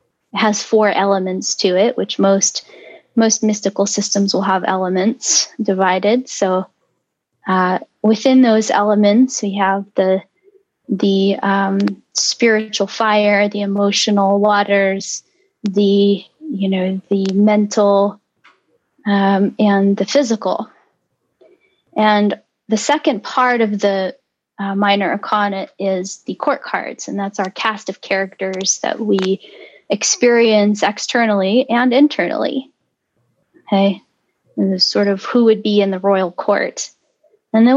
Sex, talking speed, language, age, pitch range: female, 125 wpm, English, 20-39, 195-230 Hz